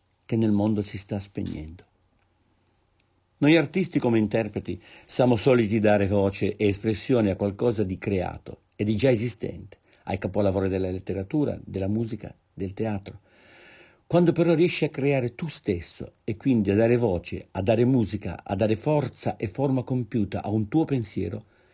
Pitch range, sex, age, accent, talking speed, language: 95-120 Hz, male, 50-69, native, 155 wpm, Italian